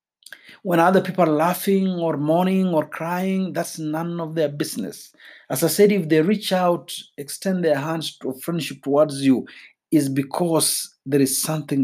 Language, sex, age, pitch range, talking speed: Swahili, male, 50-69, 135-190 Hz, 165 wpm